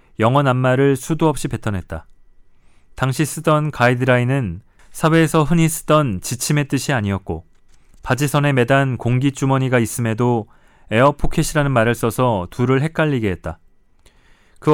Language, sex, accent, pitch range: Korean, male, native, 105-140 Hz